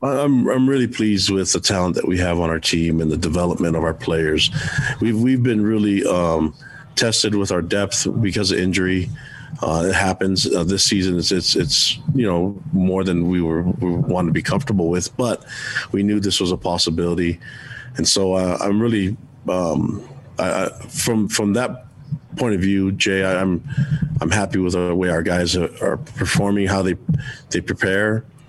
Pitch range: 85-110 Hz